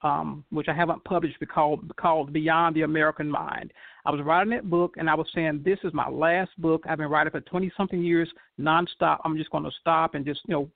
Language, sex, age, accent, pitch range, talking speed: English, male, 50-69, American, 155-200 Hz, 230 wpm